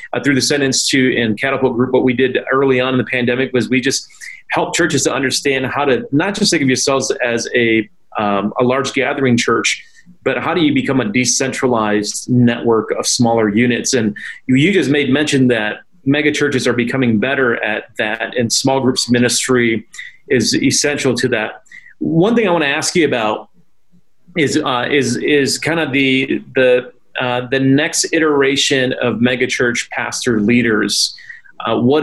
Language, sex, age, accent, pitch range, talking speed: English, male, 30-49, American, 120-145 Hz, 180 wpm